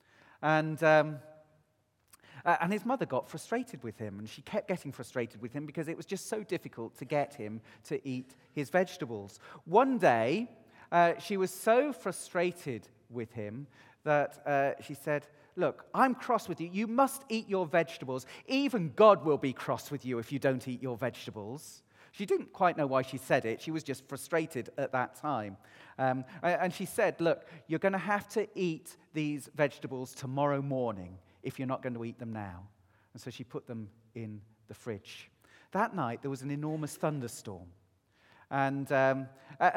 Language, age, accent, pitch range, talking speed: English, 40-59, British, 130-185 Hz, 185 wpm